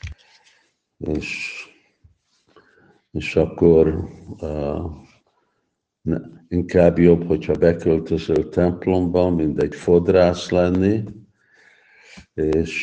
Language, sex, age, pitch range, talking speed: Hungarian, male, 50-69, 80-90 Hz, 70 wpm